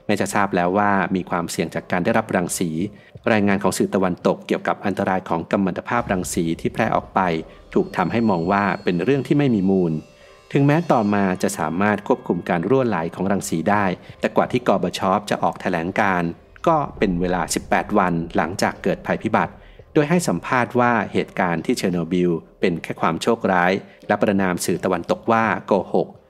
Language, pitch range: Thai, 90-115 Hz